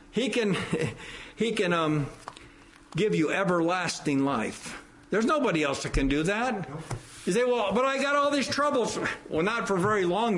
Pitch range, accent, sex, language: 185-260 Hz, American, male, English